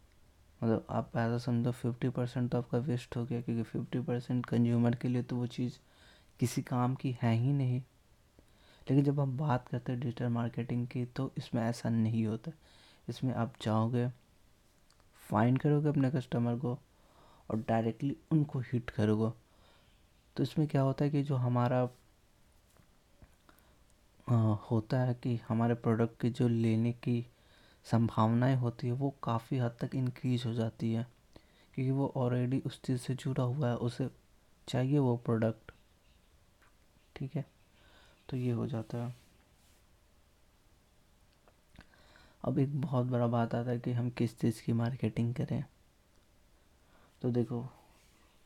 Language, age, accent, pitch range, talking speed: Hindi, 20-39, native, 115-125 Hz, 145 wpm